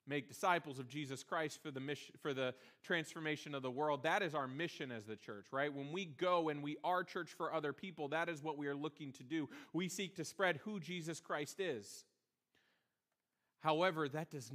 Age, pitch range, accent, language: 40-59, 130-170 Hz, American, English